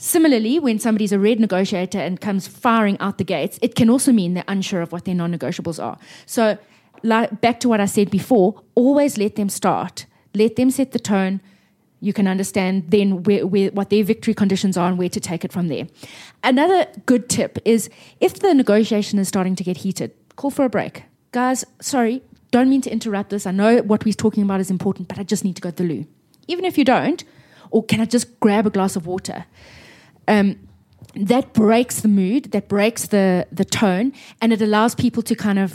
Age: 20-39